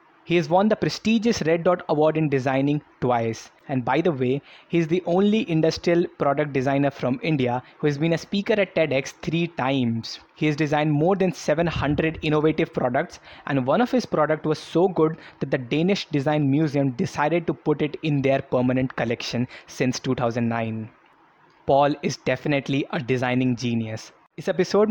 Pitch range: 130-165 Hz